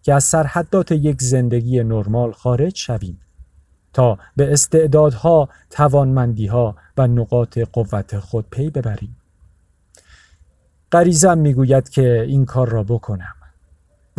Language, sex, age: Persian, male, 40-59